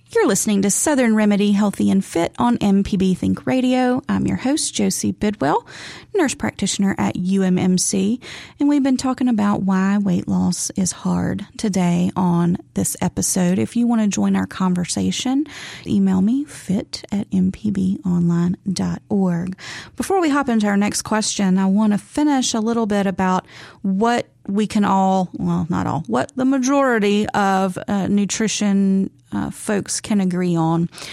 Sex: female